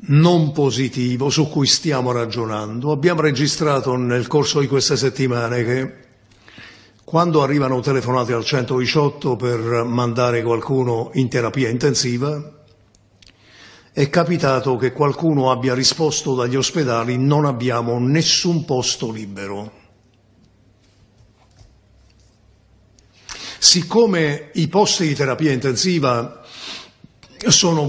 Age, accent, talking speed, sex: 50-69, native, 95 wpm, male